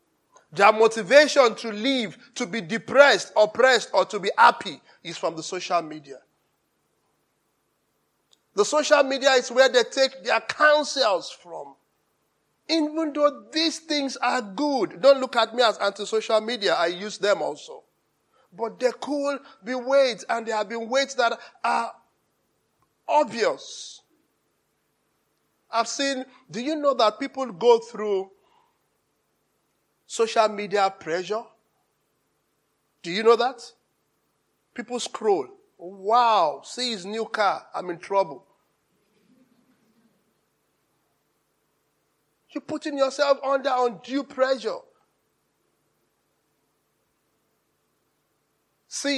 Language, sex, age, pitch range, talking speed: English, male, 50-69, 220-275 Hz, 110 wpm